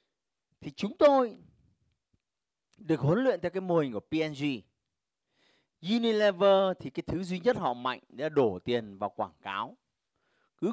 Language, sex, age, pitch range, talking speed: Vietnamese, male, 30-49, 125-185 Hz, 150 wpm